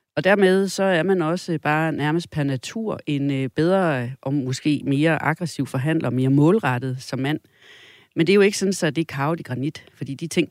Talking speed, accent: 200 wpm, native